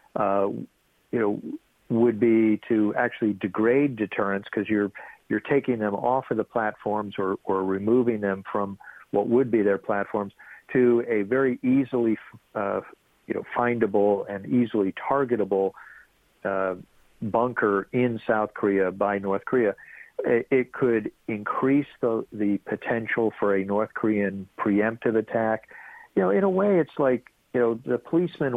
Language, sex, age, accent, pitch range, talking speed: English, male, 50-69, American, 105-125 Hz, 150 wpm